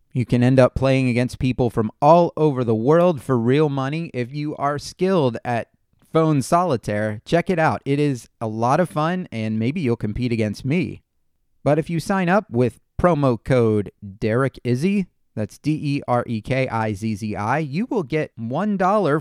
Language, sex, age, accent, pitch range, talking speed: English, male, 30-49, American, 120-160 Hz, 170 wpm